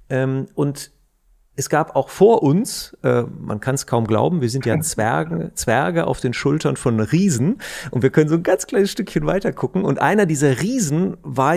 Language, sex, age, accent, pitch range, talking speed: German, male, 40-59, German, 120-165 Hz, 195 wpm